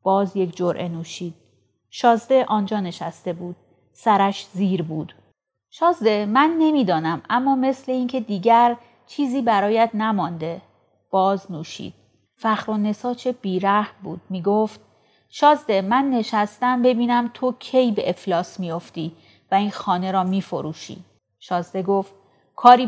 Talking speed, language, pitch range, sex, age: 125 wpm, Persian, 185-235 Hz, female, 30-49